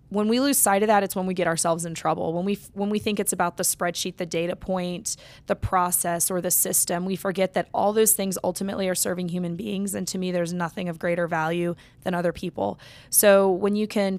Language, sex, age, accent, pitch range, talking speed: English, female, 20-39, American, 180-205 Hz, 235 wpm